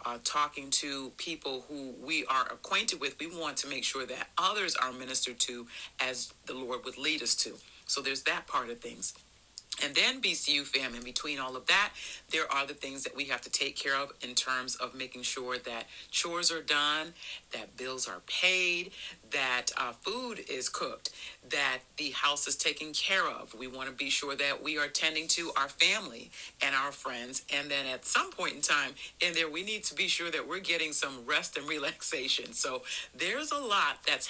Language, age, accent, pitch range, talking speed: English, 40-59, American, 130-165 Hz, 205 wpm